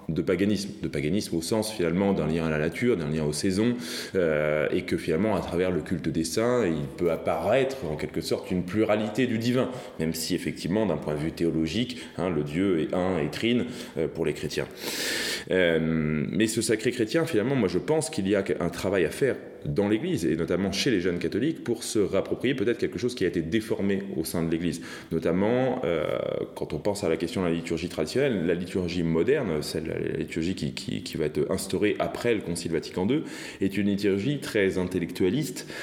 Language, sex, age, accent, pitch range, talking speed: French, male, 20-39, French, 85-110 Hz, 215 wpm